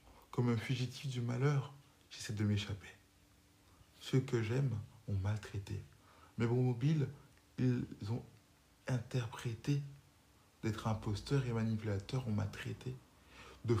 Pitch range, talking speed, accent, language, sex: 95-125 Hz, 115 wpm, French, French, male